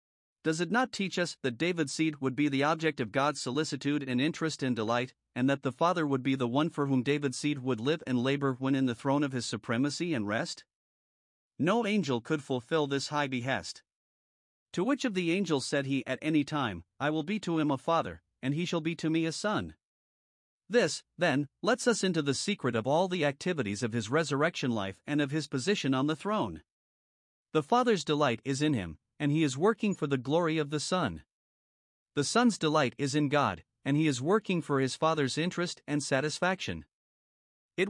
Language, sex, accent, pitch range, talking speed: English, male, American, 130-170 Hz, 205 wpm